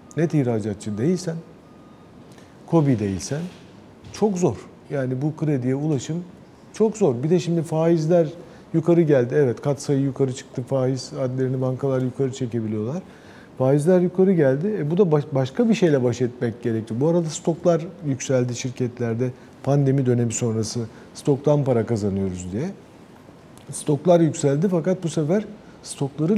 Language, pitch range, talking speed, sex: Turkish, 125-170 Hz, 135 wpm, male